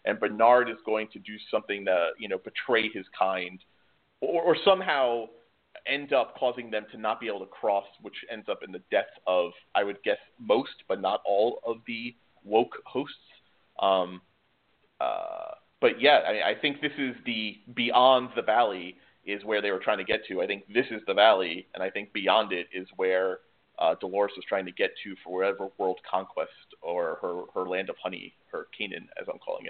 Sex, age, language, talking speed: male, 30-49, English, 200 wpm